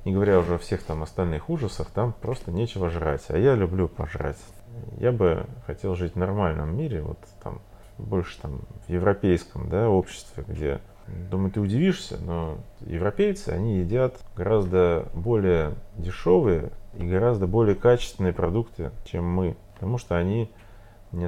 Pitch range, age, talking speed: 85-105 Hz, 30-49, 140 wpm